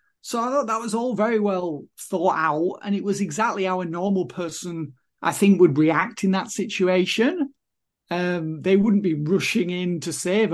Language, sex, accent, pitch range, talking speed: English, male, British, 170-215 Hz, 190 wpm